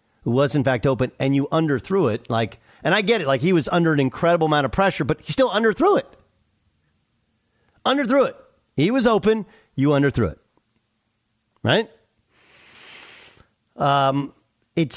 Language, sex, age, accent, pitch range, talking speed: English, male, 50-69, American, 115-180 Hz, 155 wpm